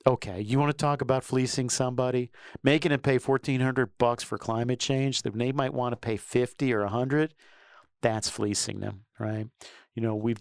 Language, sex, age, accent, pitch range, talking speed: English, male, 50-69, American, 105-135 Hz, 195 wpm